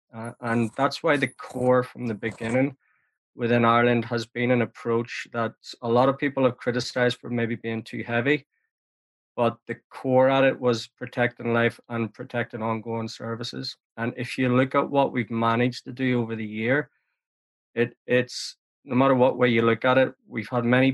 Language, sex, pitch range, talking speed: English, male, 115-125 Hz, 185 wpm